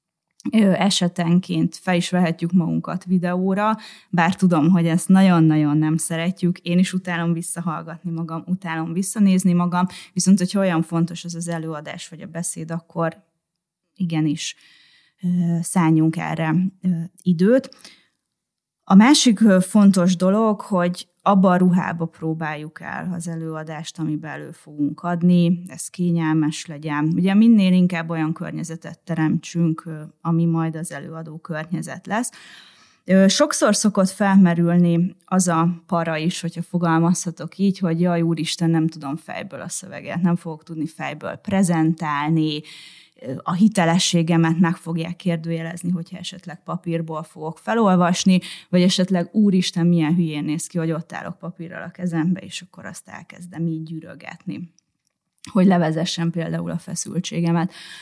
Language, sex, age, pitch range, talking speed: Hungarian, female, 20-39, 165-185 Hz, 130 wpm